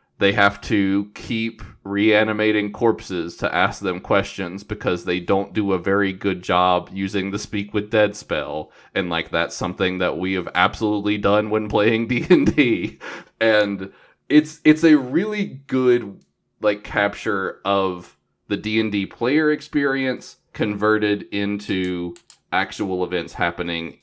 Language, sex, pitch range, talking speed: English, male, 90-110 Hz, 135 wpm